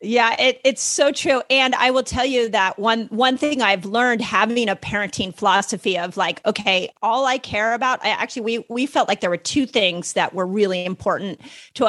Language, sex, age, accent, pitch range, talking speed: English, female, 40-59, American, 195-255 Hz, 210 wpm